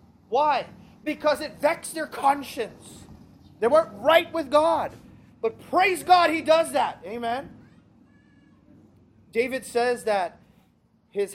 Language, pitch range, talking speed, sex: English, 180-260 Hz, 115 wpm, male